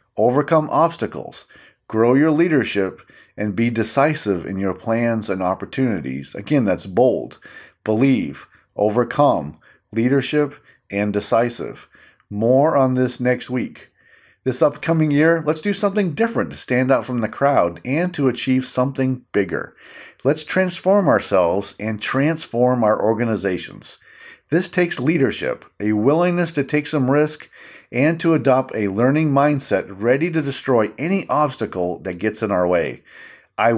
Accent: American